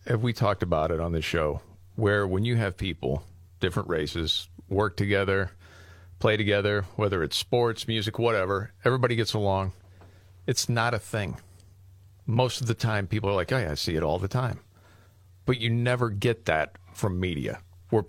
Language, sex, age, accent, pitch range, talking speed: English, male, 40-59, American, 90-115 Hz, 180 wpm